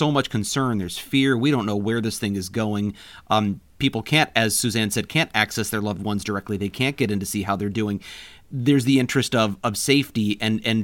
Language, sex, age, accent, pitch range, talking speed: English, male, 40-59, American, 110-140 Hz, 235 wpm